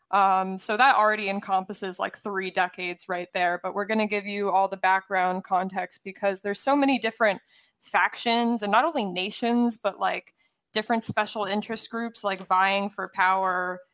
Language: English